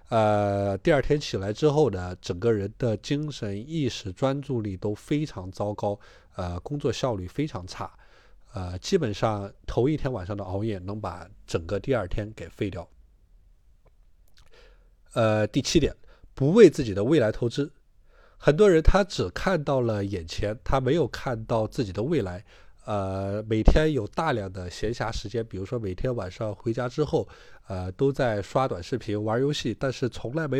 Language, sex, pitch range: Chinese, male, 100-135 Hz